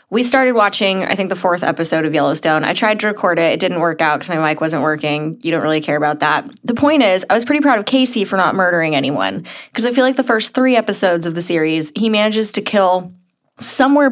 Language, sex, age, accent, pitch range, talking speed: English, female, 20-39, American, 170-220 Hz, 250 wpm